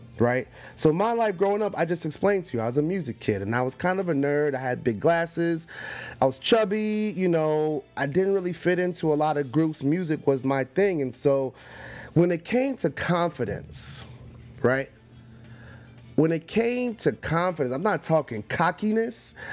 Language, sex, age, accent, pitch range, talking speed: English, male, 30-49, American, 125-165 Hz, 190 wpm